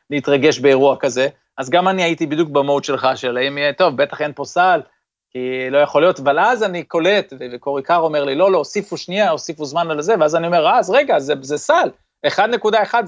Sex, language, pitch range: male, Hebrew, 135-185 Hz